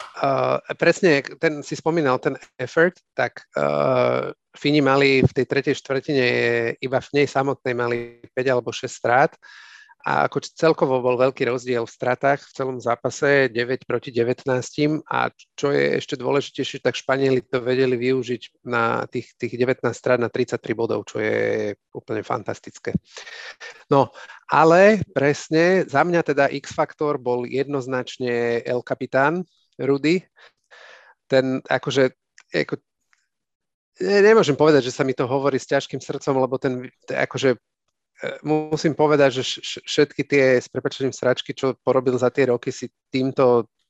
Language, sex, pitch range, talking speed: Slovak, male, 125-145 Hz, 145 wpm